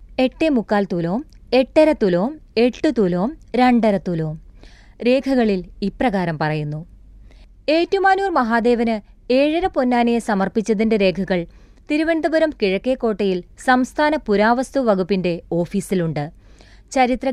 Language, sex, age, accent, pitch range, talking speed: Malayalam, female, 30-49, native, 180-255 Hz, 80 wpm